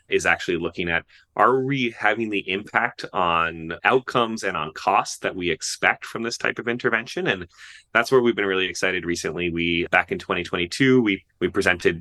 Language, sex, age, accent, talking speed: English, male, 30-49, American, 185 wpm